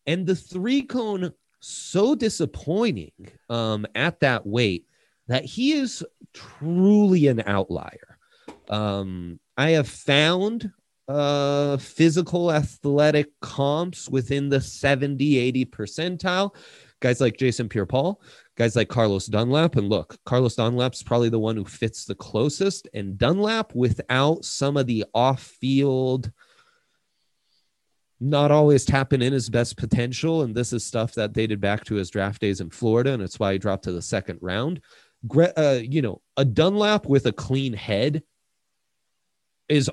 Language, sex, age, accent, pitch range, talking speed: English, male, 30-49, American, 110-150 Hz, 140 wpm